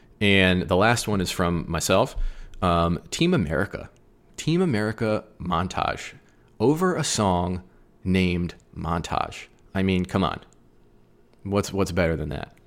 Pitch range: 85-110 Hz